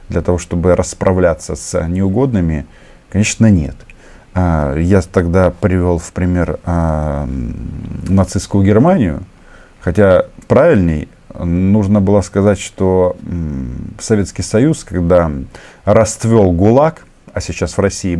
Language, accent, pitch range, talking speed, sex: Russian, native, 85-110 Hz, 100 wpm, male